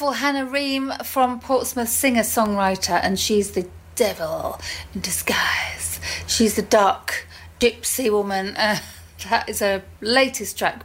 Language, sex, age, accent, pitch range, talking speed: English, female, 40-59, British, 190-235 Hz, 120 wpm